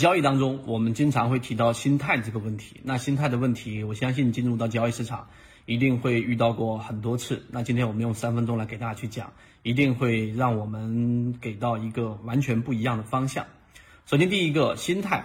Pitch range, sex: 115-130 Hz, male